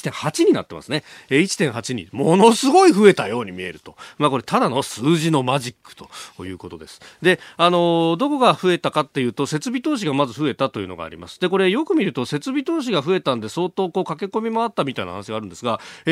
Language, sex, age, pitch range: Japanese, male, 30-49, 120-195 Hz